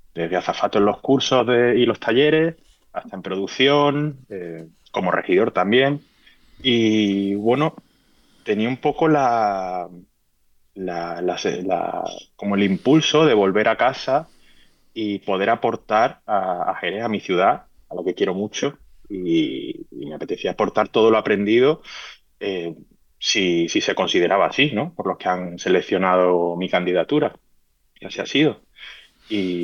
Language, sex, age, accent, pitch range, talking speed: Spanish, male, 20-39, Spanish, 90-130 Hz, 150 wpm